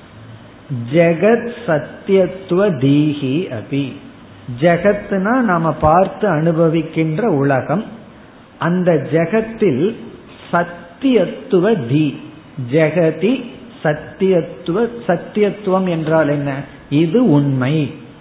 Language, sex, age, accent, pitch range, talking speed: Tamil, male, 50-69, native, 140-185 Hz, 55 wpm